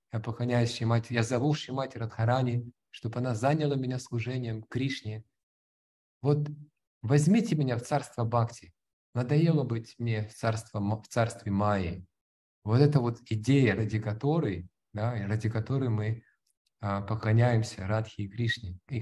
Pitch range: 100-125 Hz